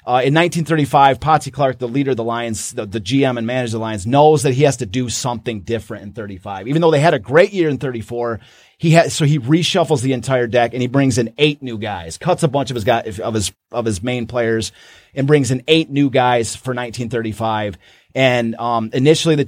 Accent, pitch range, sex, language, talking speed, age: American, 115-140 Hz, male, English, 235 wpm, 30-49